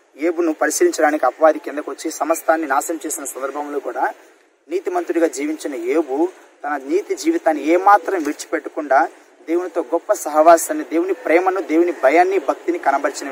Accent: native